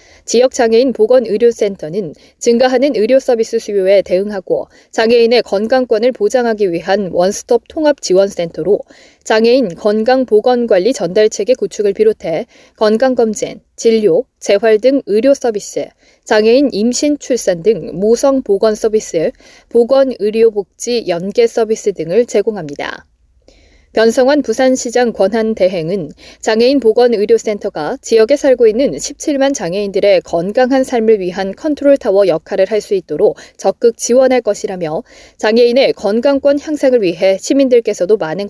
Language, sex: Korean, female